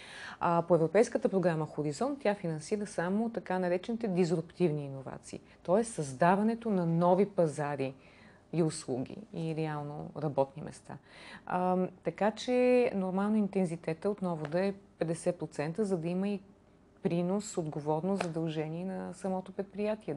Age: 30-49